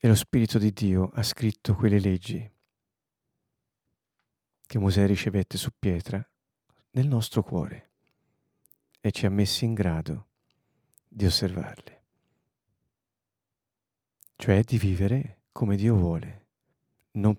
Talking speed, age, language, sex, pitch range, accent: 110 wpm, 50-69, Italian, male, 100-125 Hz, native